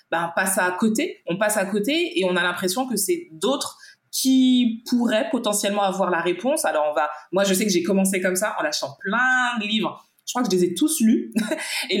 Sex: female